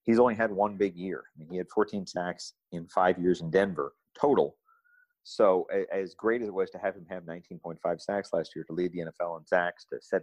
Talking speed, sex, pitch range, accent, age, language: 235 wpm, male, 85-105 Hz, American, 40-59, English